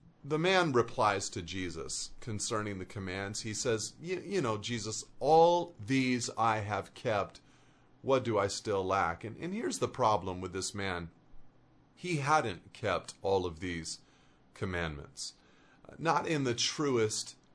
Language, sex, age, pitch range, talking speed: English, male, 40-59, 110-145 Hz, 145 wpm